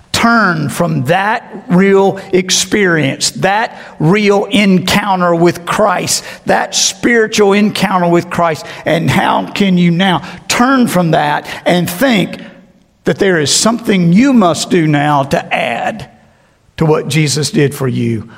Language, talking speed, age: English, 135 wpm, 50-69